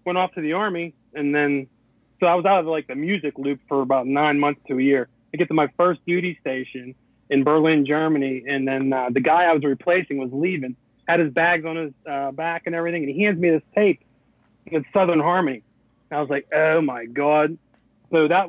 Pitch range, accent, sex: 135-165 Hz, American, male